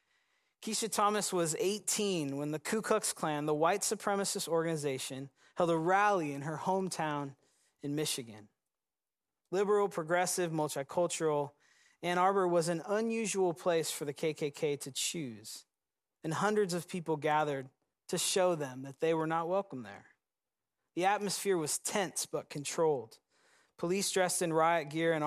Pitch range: 150-190 Hz